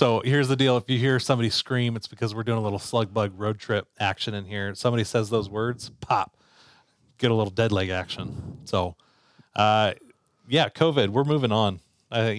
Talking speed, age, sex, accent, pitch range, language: 205 wpm, 30-49, male, American, 95-115 Hz, English